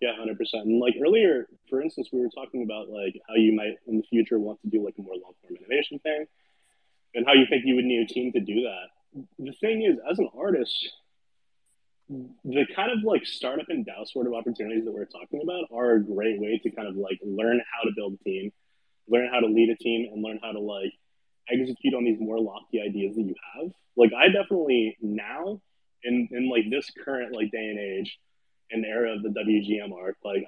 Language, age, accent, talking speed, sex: English, 20-39, American, 220 wpm, male